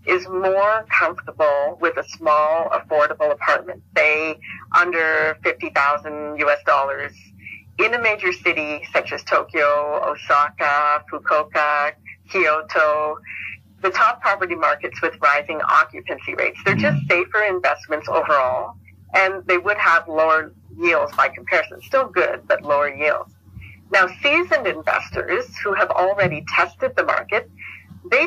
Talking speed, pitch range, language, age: 125 wpm, 145-200 Hz, English, 50-69